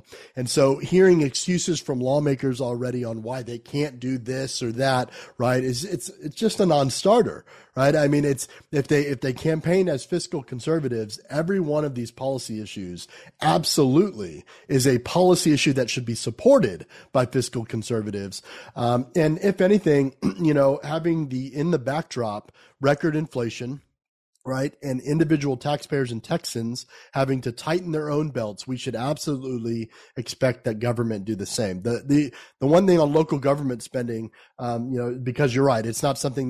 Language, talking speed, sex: English, 175 wpm, male